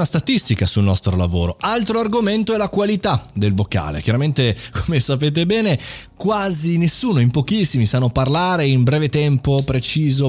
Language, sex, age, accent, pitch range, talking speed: Italian, male, 30-49, native, 105-165 Hz, 145 wpm